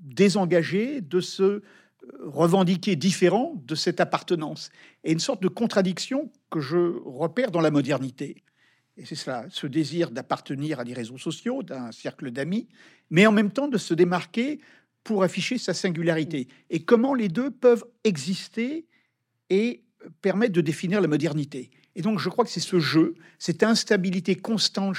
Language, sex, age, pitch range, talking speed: French, male, 50-69, 150-200 Hz, 160 wpm